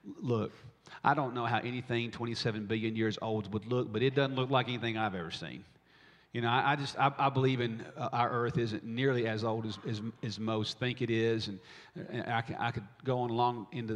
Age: 40-59